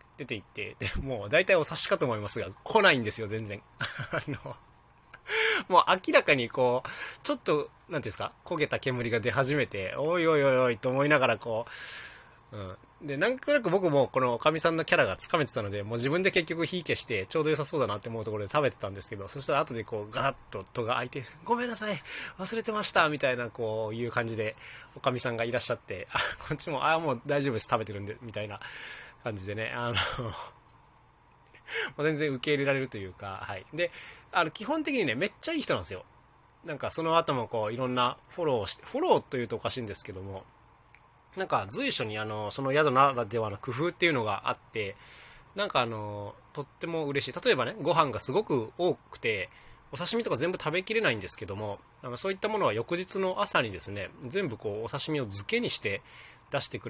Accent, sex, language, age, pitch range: native, male, Japanese, 20-39, 110-165 Hz